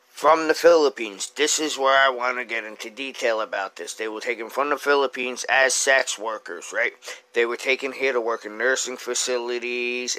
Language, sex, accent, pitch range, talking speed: English, male, American, 115-145 Hz, 195 wpm